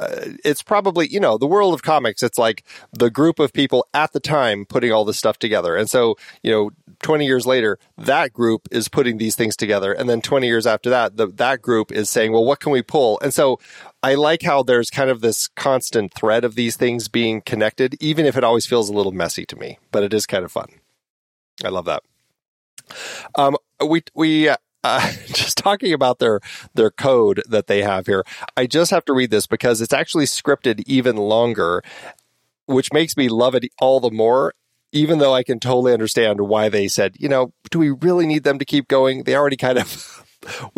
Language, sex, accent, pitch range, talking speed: English, male, American, 115-145 Hz, 215 wpm